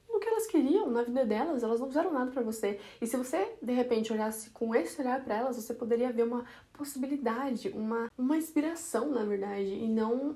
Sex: female